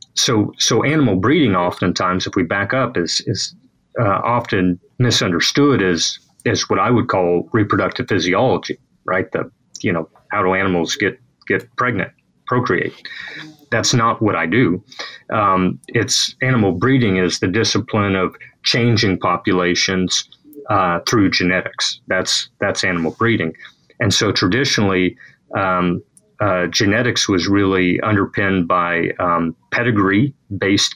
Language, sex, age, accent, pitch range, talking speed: English, male, 30-49, American, 90-115 Hz, 130 wpm